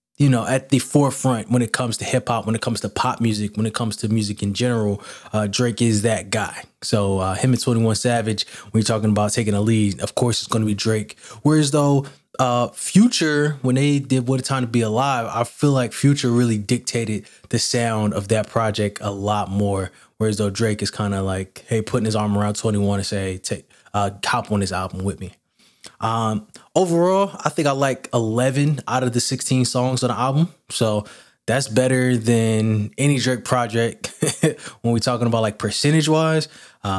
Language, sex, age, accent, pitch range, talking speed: English, male, 20-39, American, 105-130 Hz, 210 wpm